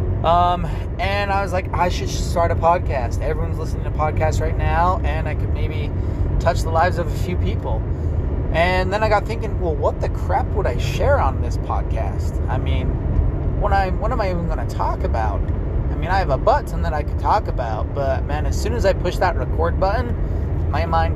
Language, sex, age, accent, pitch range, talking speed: English, male, 30-49, American, 85-95 Hz, 215 wpm